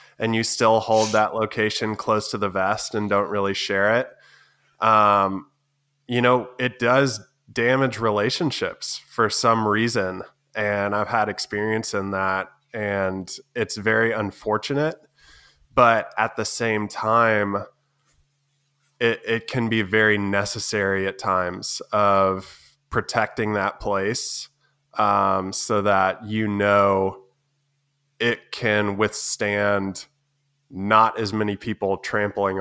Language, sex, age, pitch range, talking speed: English, male, 20-39, 100-115 Hz, 120 wpm